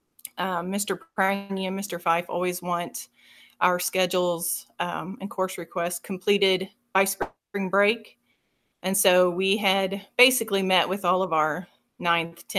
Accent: American